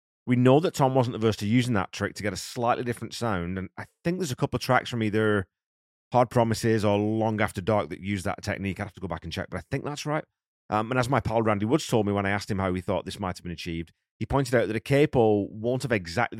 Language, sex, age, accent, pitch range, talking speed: English, male, 30-49, British, 90-115 Hz, 285 wpm